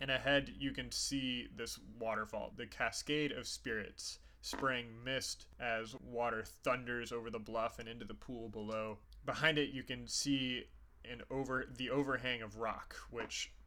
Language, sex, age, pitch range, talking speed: English, male, 20-39, 110-130 Hz, 160 wpm